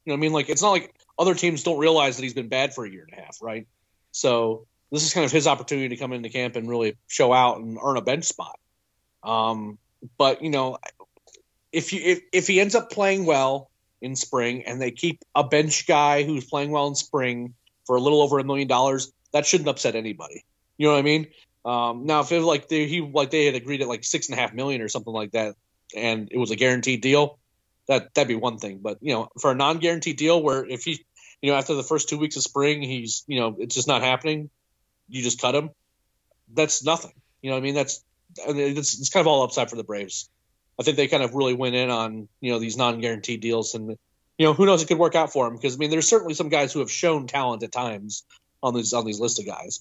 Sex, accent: male, American